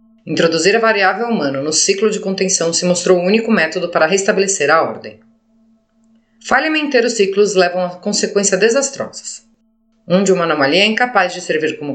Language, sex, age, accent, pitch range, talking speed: Portuguese, female, 30-49, Brazilian, 180-225 Hz, 170 wpm